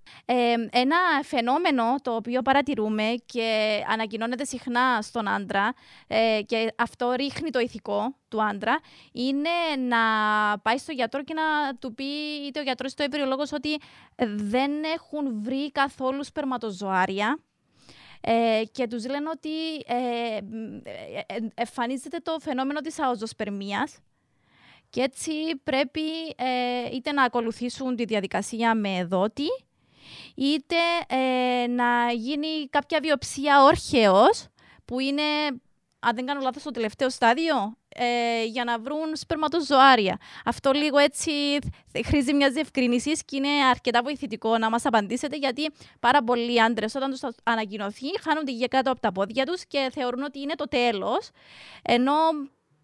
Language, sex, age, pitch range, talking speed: English, female, 20-39, 230-295 Hz, 130 wpm